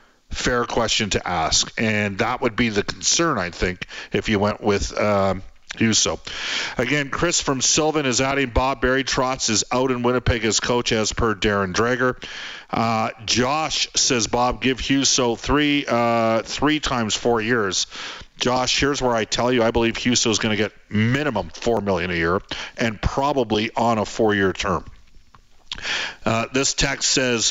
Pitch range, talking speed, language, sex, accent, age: 100-125 Hz, 170 wpm, English, male, American, 50-69